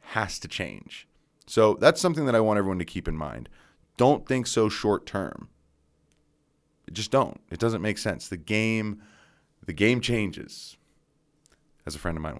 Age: 30-49